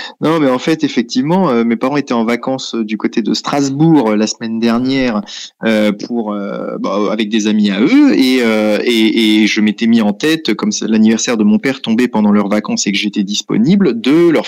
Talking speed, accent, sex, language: 225 wpm, French, male, French